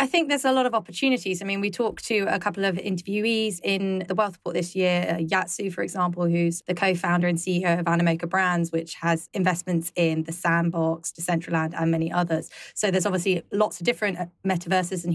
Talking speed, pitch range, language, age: 205 wpm, 170-195 Hz, English, 20-39